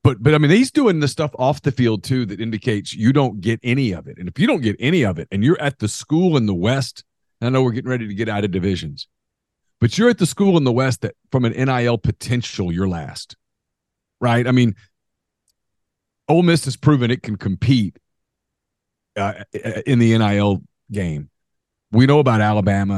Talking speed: 210 wpm